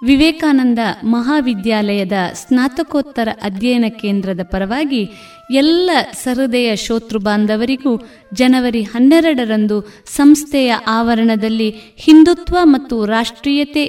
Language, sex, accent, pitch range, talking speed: Kannada, female, native, 205-270 Hz, 70 wpm